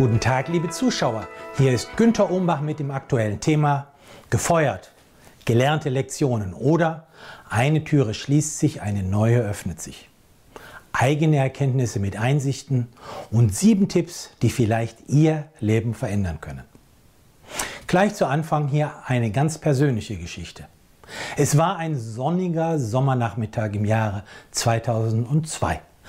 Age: 40-59